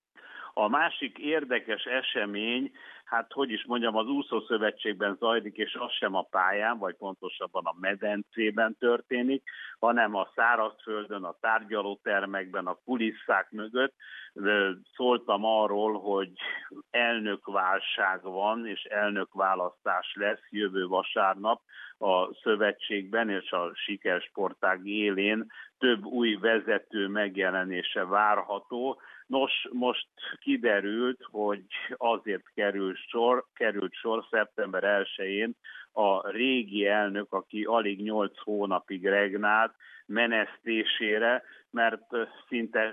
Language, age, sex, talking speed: Hungarian, 60-79, male, 100 wpm